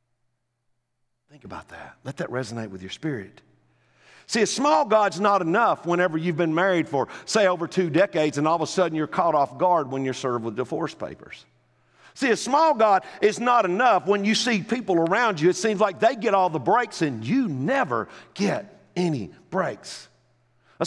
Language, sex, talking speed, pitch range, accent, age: English, male, 195 wpm, 135-210 Hz, American, 50-69